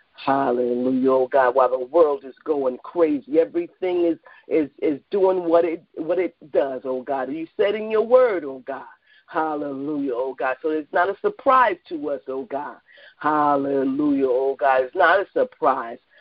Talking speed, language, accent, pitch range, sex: 175 wpm, English, American, 140-215 Hz, female